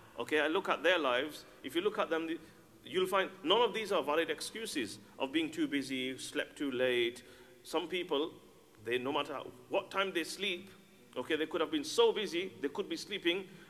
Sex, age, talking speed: male, 50-69, 200 wpm